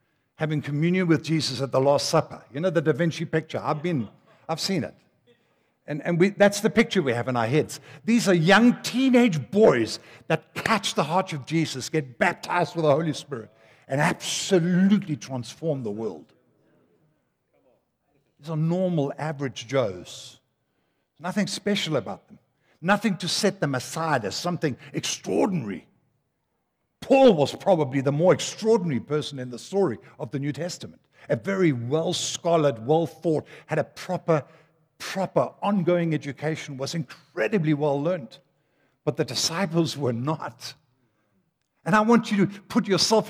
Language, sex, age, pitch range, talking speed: English, male, 60-79, 130-175 Hz, 150 wpm